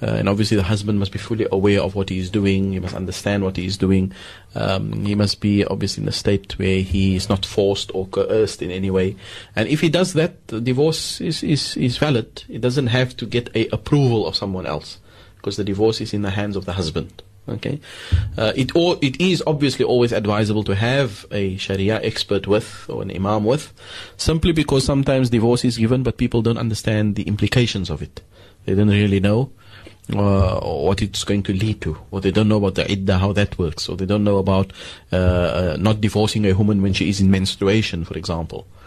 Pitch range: 95-115 Hz